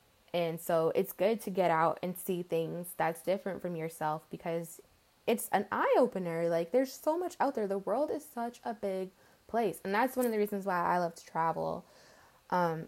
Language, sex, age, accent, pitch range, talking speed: English, female, 20-39, American, 170-230 Hz, 205 wpm